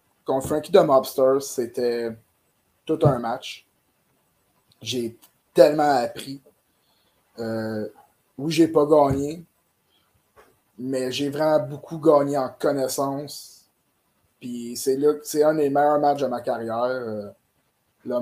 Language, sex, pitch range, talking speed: French, male, 120-145 Hz, 110 wpm